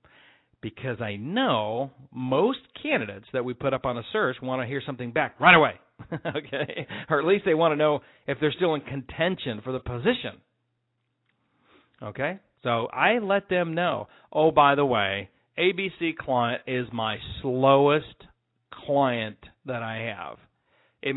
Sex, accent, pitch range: male, American, 120-155 Hz